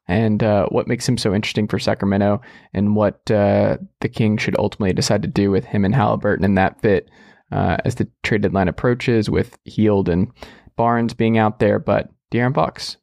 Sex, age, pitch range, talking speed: male, 20-39, 110-145 Hz, 190 wpm